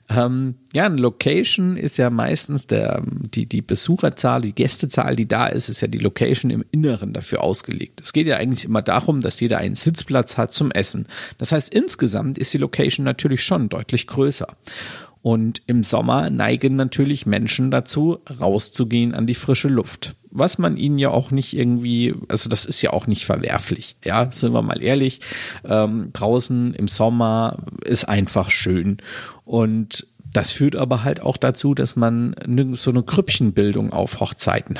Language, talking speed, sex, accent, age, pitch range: German, 170 wpm, male, German, 50-69, 115-150 Hz